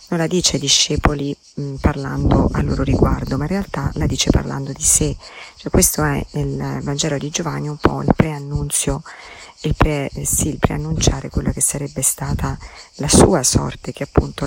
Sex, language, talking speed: female, Italian, 185 wpm